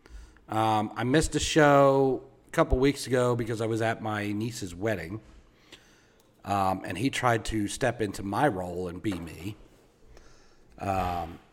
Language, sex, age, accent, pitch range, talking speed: English, male, 40-59, American, 95-125 Hz, 150 wpm